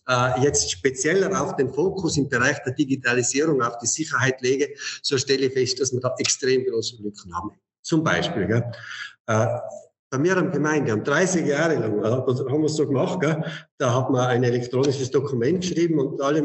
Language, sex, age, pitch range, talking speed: German, male, 50-69, 130-160 Hz, 190 wpm